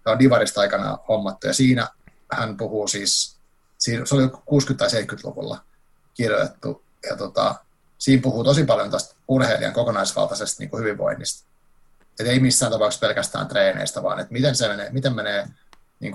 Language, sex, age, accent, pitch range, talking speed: Finnish, male, 30-49, native, 110-130 Hz, 150 wpm